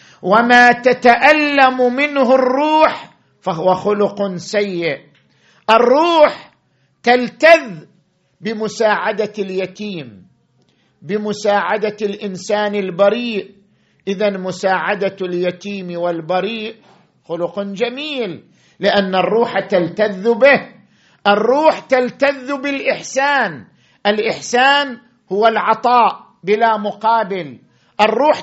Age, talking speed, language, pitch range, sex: 50-69, 70 wpm, Arabic, 190-245 Hz, male